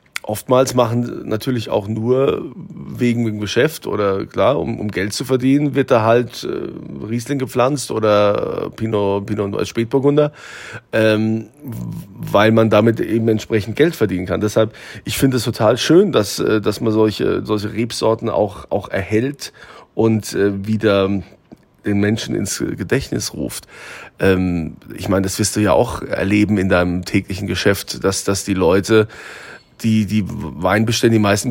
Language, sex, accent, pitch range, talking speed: German, male, German, 105-120 Hz, 155 wpm